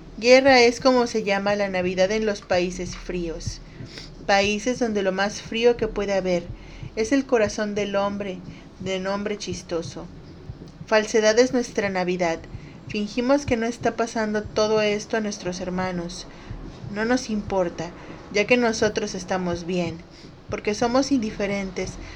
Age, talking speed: 30-49, 140 wpm